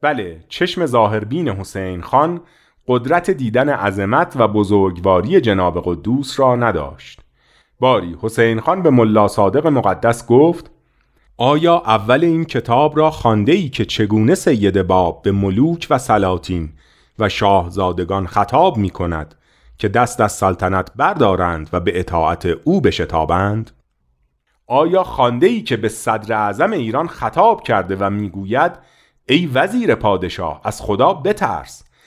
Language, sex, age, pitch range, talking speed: Persian, male, 40-59, 100-140 Hz, 130 wpm